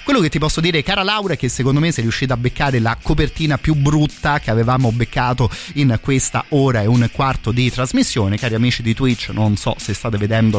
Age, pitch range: 30-49, 110-135 Hz